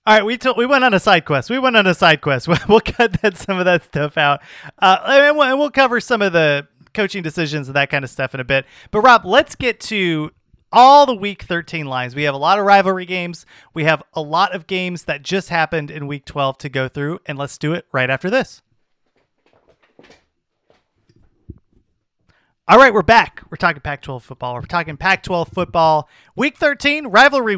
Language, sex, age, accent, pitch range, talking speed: English, male, 30-49, American, 150-220 Hz, 215 wpm